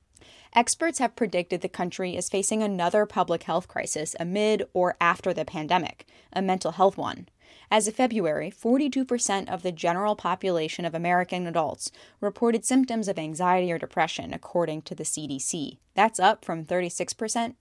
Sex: female